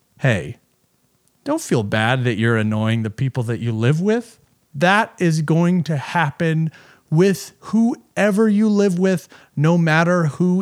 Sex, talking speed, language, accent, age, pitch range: male, 145 wpm, English, American, 30-49, 135-190 Hz